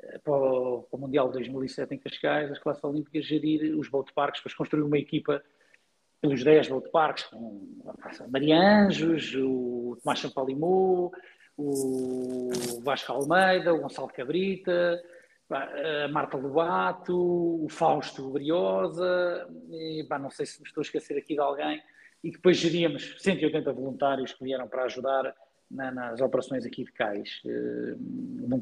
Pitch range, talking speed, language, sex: 130-170 Hz, 145 wpm, Portuguese, male